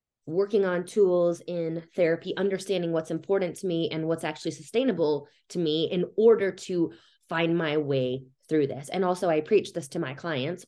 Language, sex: English, female